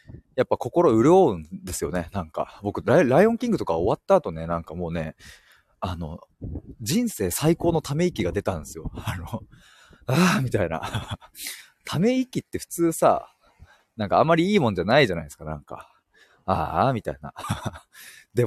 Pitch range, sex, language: 90-130 Hz, male, Japanese